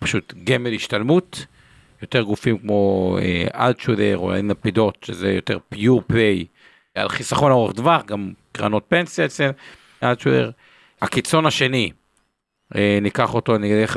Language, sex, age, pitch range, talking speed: Hebrew, male, 50-69, 100-130 Hz, 115 wpm